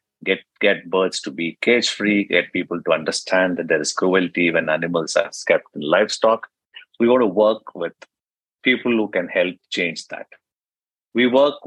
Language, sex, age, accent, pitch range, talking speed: English, male, 50-69, Indian, 85-125 Hz, 170 wpm